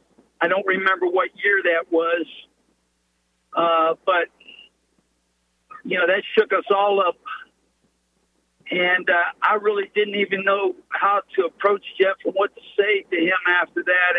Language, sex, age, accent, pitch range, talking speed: English, male, 50-69, American, 180-290 Hz, 150 wpm